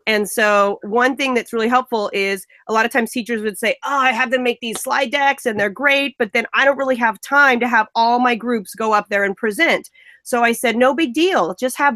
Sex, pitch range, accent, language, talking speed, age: female, 195-250 Hz, American, English, 255 wpm, 30-49